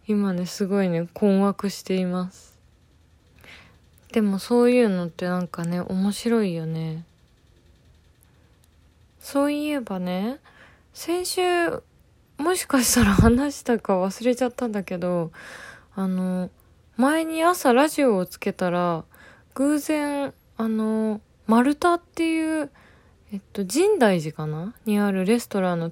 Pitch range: 170-275 Hz